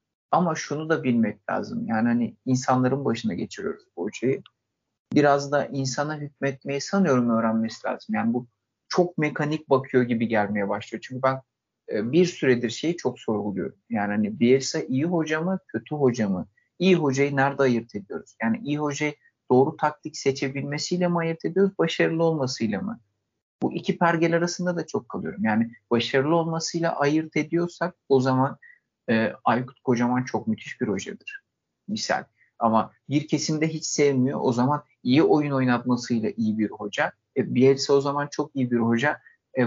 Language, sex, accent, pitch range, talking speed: Turkish, male, native, 120-155 Hz, 155 wpm